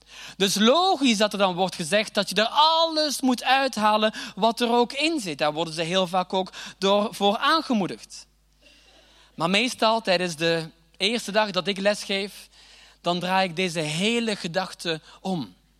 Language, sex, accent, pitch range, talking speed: Dutch, male, Dutch, 175-230 Hz, 160 wpm